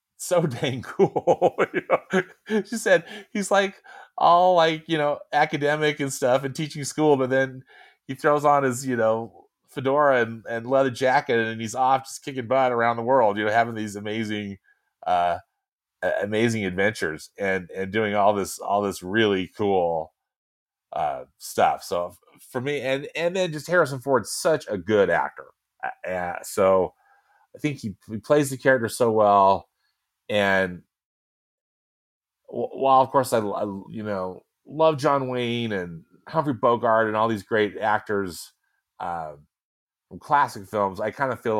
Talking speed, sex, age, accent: 160 wpm, male, 30-49, American